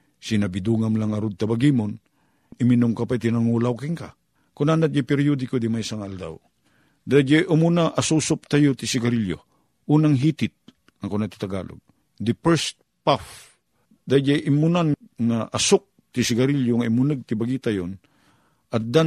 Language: Filipino